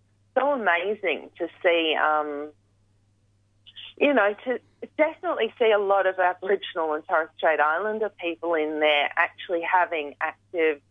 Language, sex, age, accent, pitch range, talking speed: English, female, 30-49, Australian, 150-185 Hz, 140 wpm